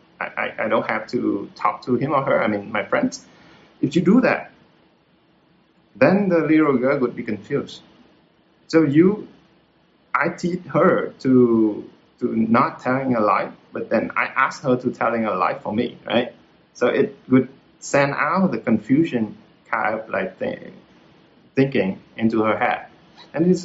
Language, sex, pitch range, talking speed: Vietnamese, male, 110-160 Hz, 165 wpm